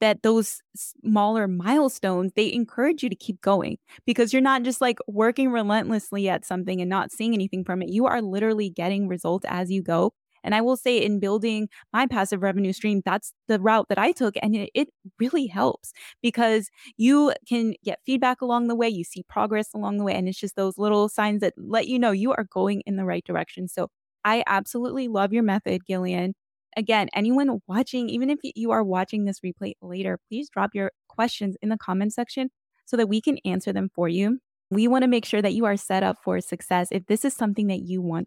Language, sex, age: English, female, 10-29